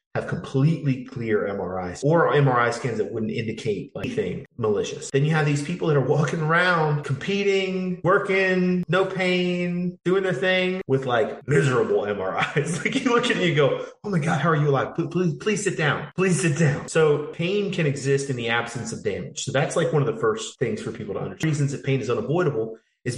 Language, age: English, 30-49